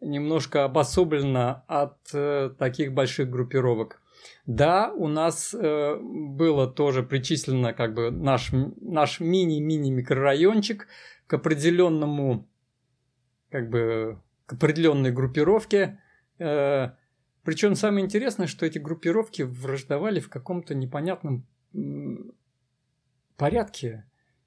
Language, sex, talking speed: Russian, male, 95 wpm